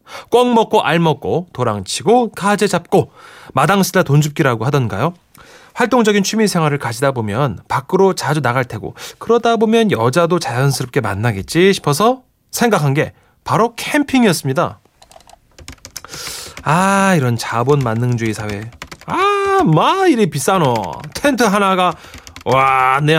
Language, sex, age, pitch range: Korean, male, 30-49, 140-210 Hz